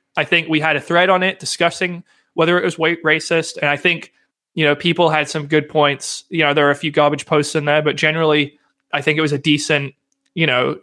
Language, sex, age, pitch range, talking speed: English, male, 20-39, 140-165 Hz, 245 wpm